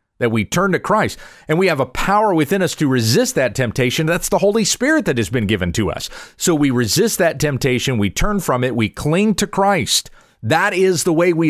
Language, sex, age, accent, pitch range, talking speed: English, male, 40-59, American, 125-185 Hz, 230 wpm